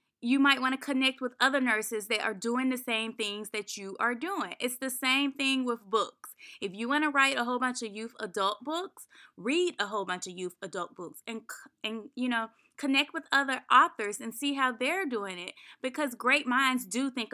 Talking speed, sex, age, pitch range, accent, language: 220 wpm, female, 20-39, 220-270 Hz, American, English